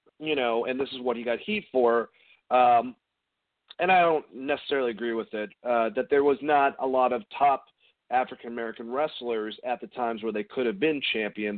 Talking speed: 195 wpm